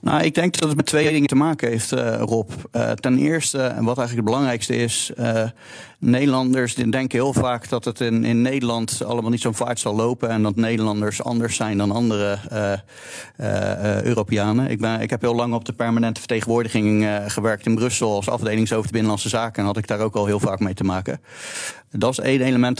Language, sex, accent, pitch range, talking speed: Dutch, male, Dutch, 105-120 Hz, 215 wpm